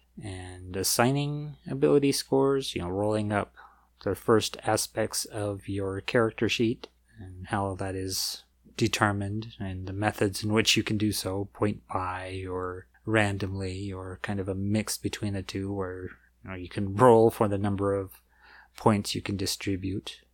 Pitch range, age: 100-135 Hz, 30-49